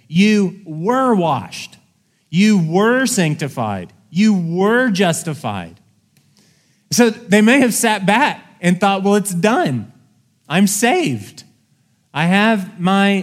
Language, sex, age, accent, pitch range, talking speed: English, male, 30-49, American, 160-215 Hz, 115 wpm